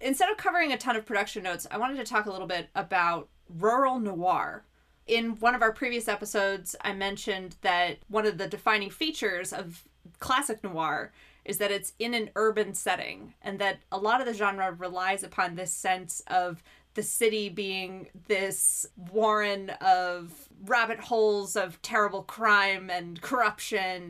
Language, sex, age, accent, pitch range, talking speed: English, female, 20-39, American, 185-230 Hz, 165 wpm